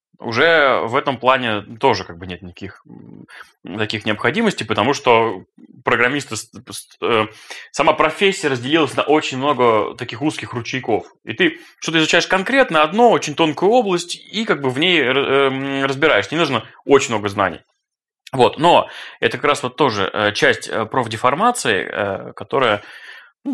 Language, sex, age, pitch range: Russian, male, 20-39, 100-135 Hz